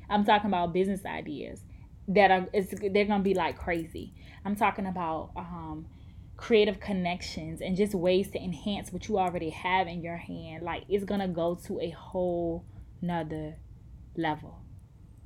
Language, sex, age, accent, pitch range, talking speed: English, female, 20-39, American, 170-195 Hz, 160 wpm